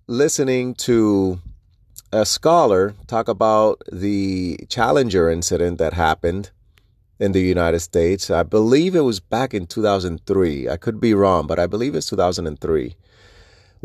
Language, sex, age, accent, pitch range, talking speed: English, male, 30-49, American, 95-120 Hz, 135 wpm